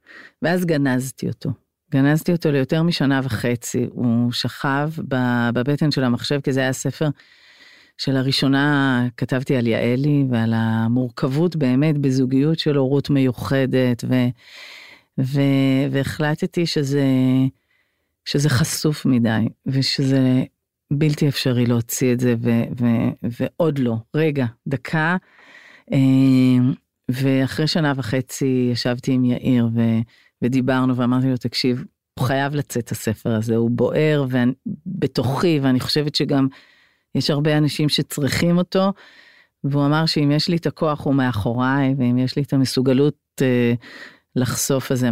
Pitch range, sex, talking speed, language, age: 125-150 Hz, female, 125 wpm, Hebrew, 40-59